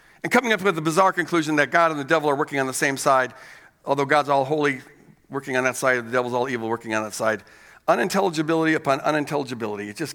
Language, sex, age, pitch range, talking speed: English, male, 50-69, 150-200 Hz, 230 wpm